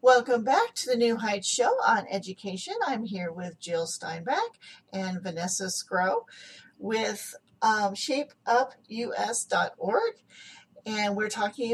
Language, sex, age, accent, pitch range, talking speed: English, female, 40-59, American, 185-240 Hz, 120 wpm